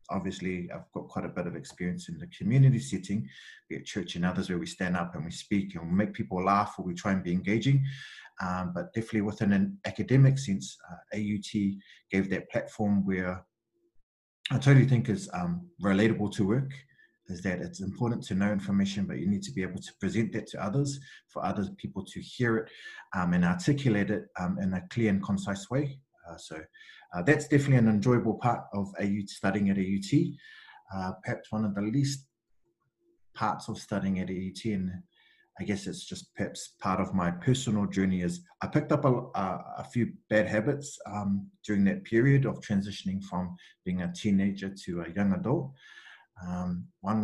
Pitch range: 95-135 Hz